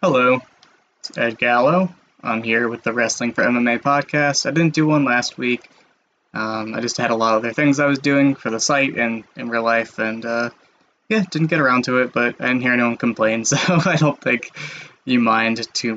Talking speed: 220 wpm